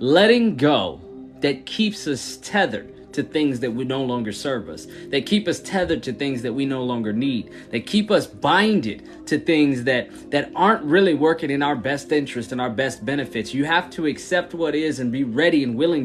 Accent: American